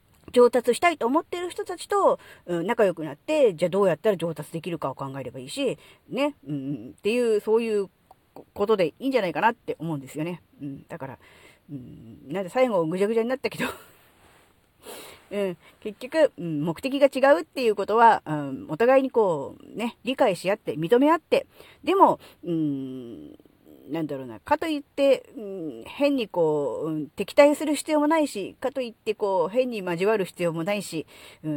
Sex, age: female, 40-59